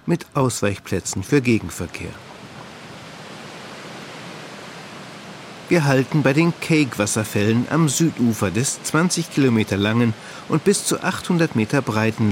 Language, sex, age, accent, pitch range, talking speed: German, male, 50-69, German, 110-160 Hz, 100 wpm